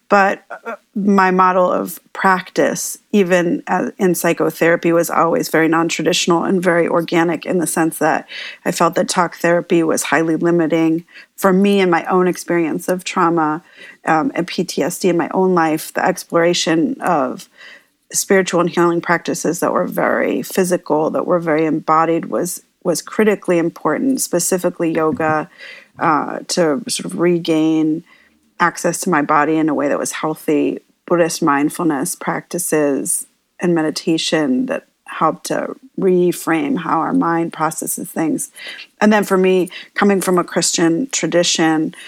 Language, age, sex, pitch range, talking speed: English, 40-59, female, 160-185 Hz, 145 wpm